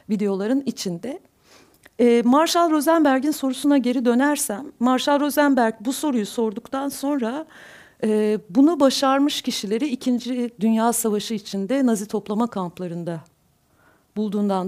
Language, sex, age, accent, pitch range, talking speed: Turkish, female, 50-69, native, 195-255 Hz, 105 wpm